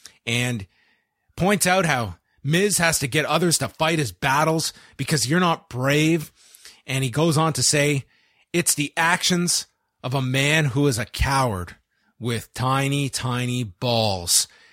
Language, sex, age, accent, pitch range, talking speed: English, male, 30-49, American, 120-160 Hz, 150 wpm